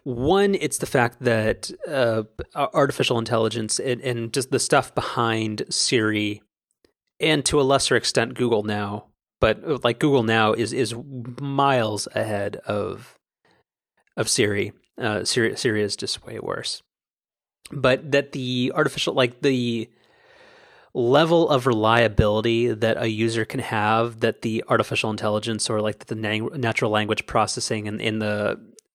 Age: 30-49